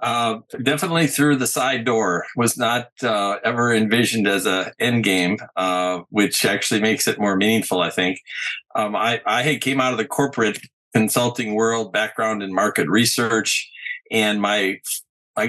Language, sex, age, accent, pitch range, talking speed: English, male, 50-69, American, 100-120 Hz, 165 wpm